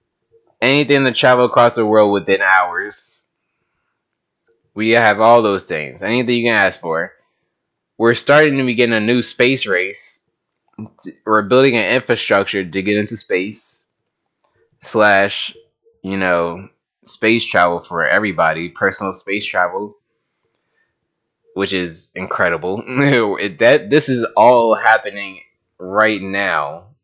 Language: English